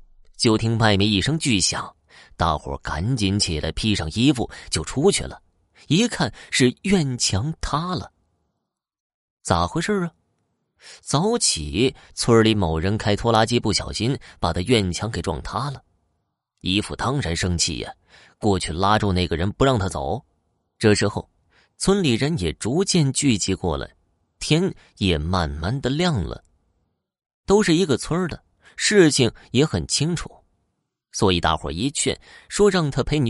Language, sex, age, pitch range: Chinese, male, 30-49, 85-125 Hz